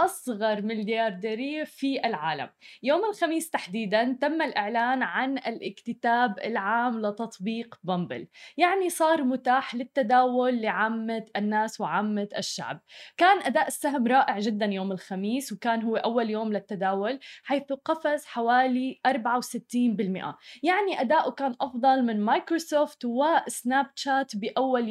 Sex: female